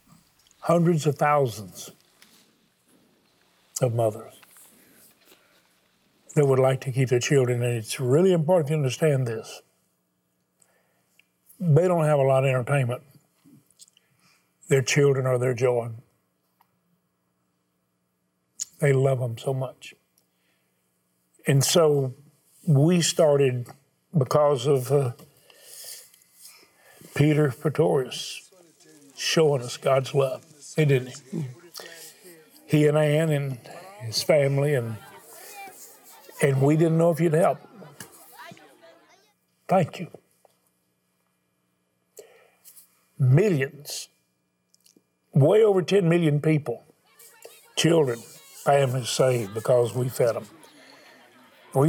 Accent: American